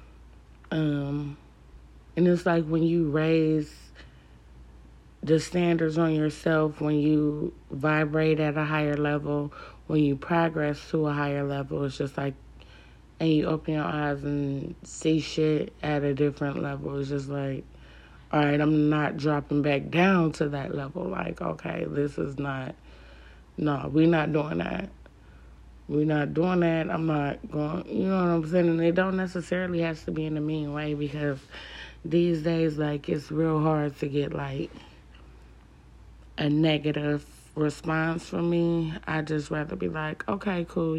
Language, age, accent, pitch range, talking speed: English, 30-49, American, 140-165 Hz, 160 wpm